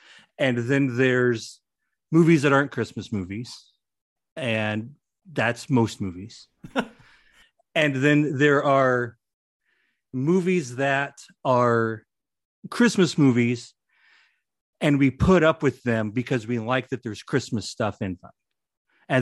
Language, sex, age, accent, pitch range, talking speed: English, male, 40-59, American, 110-140 Hz, 115 wpm